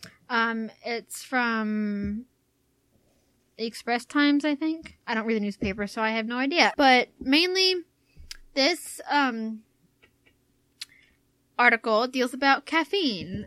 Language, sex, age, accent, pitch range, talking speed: English, female, 10-29, American, 215-270 Hz, 115 wpm